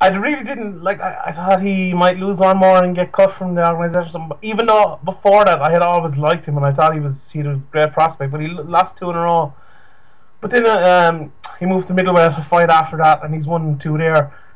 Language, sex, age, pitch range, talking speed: English, male, 20-39, 140-180 Hz, 260 wpm